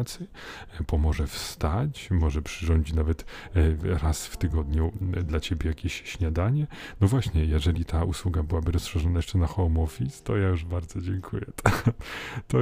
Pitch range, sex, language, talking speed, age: 80-100 Hz, male, Polish, 140 wpm, 40-59